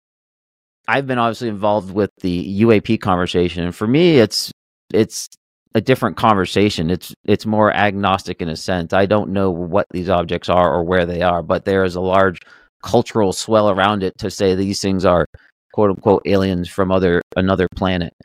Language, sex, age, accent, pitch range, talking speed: English, male, 40-59, American, 85-100 Hz, 180 wpm